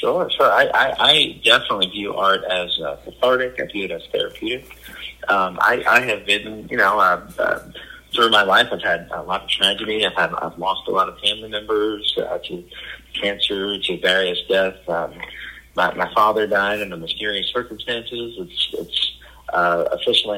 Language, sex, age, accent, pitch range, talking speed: English, male, 30-49, American, 95-130 Hz, 185 wpm